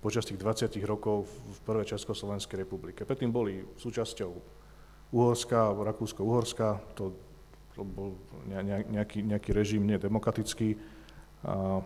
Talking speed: 105 wpm